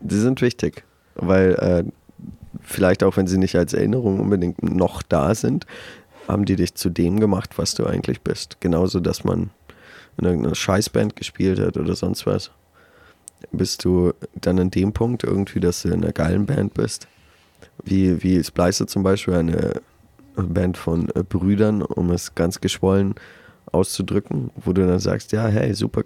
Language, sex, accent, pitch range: German, male, German, 90-100 Hz